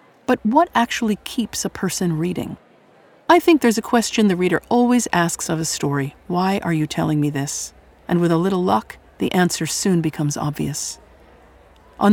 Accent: American